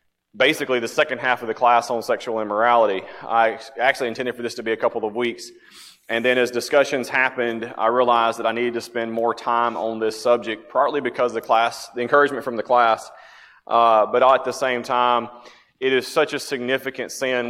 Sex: male